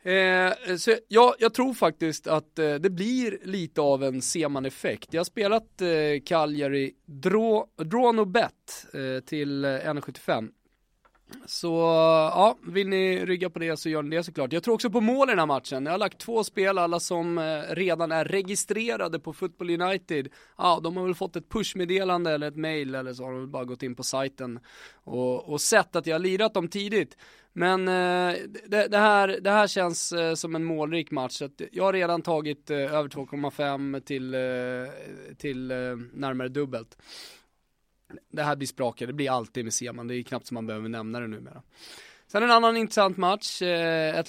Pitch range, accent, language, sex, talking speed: 135-180 Hz, Swedish, English, male, 175 wpm